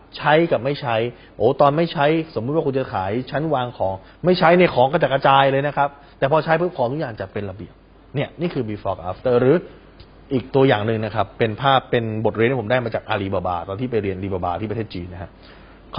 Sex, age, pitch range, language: male, 20-39, 100-140 Hz, Thai